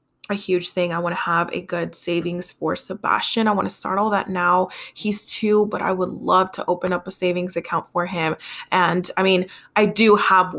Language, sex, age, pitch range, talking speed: English, female, 20-39, 175-210 Hz, 220 wpm